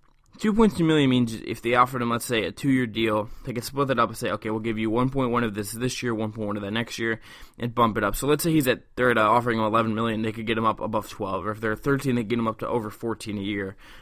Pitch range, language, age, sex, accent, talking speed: 110-135 Hz, English, 20-39, male, American, 290 wpm